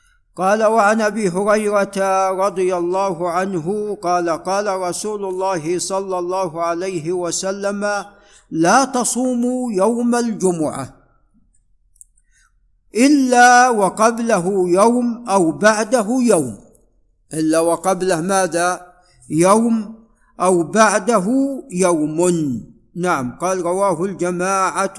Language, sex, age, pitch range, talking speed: Arabic, male, 50-69, 170-210 Hz, 85 wpm